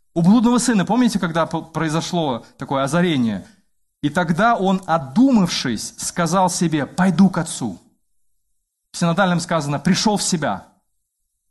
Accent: native